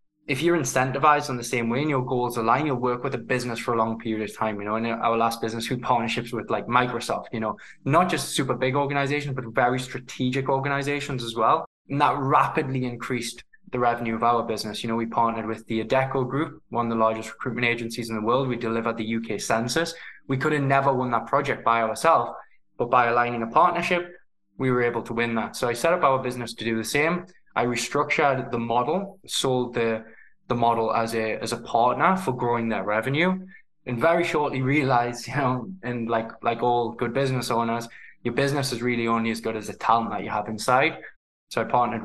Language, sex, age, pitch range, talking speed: English, male, 20-39, 115-140 Hz, 220 wpm